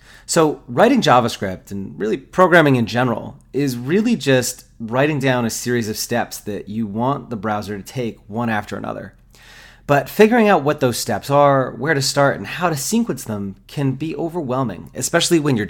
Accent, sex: American, male